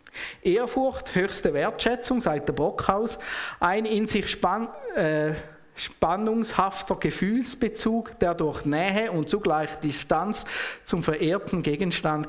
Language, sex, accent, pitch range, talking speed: German, male, Austrian, 155-210 Hz, 105 wpm